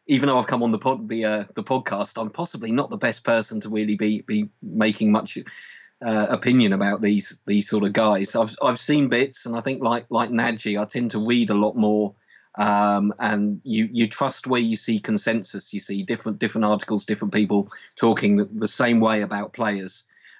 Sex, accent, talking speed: male, British, 210 wpm